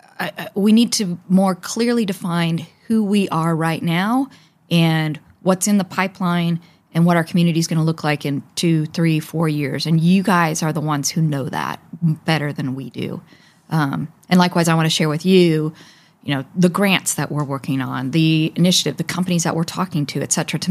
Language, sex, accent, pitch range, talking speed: English, female, American, 150-180 Hz, 205 wpm